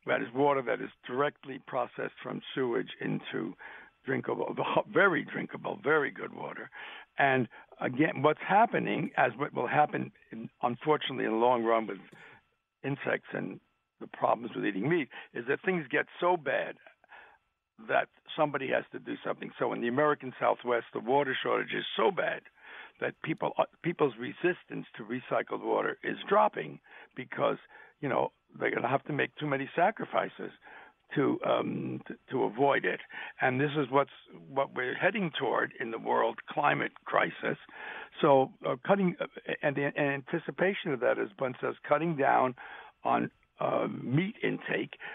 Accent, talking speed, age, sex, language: American, 160 wpm, 60-79, male, English